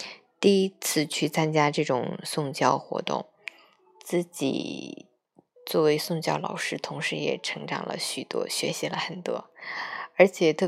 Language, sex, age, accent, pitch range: Chinese, female, 20-39, native, 150-210 Hz